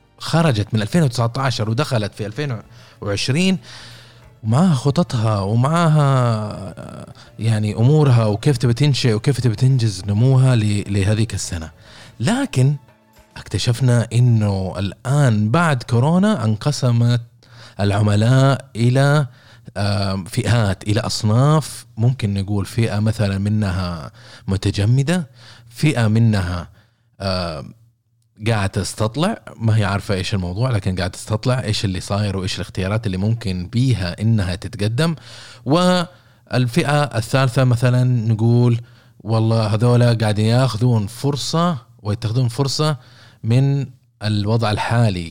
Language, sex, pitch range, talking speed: Arabic, male, 105-130 Hz, 95 wpm